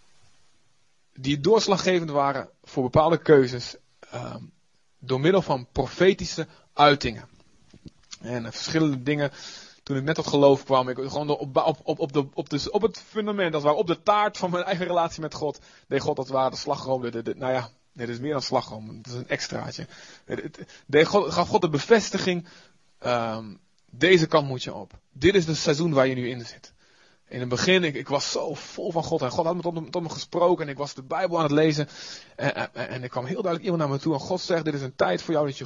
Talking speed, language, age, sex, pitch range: 215 wpm, Dutch, 30-49, male, 135-180 Hz